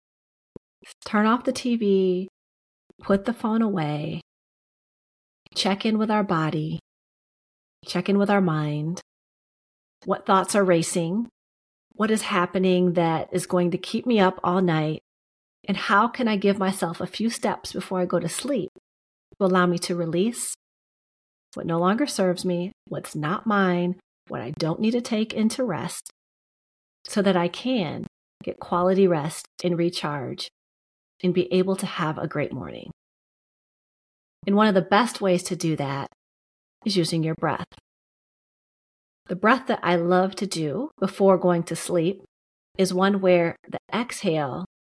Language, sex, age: English, female, 40-59